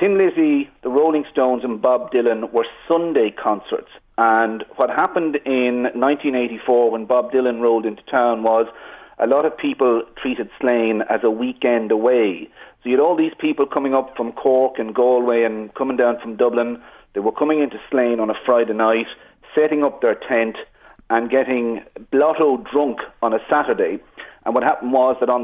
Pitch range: 120-140 Hz